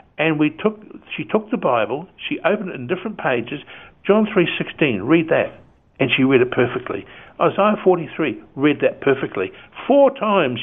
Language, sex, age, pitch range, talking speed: English, male, 60-79, 125-185 Hz, 165 wpm